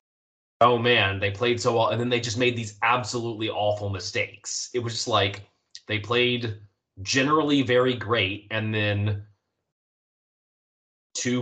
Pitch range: 95-120 Hz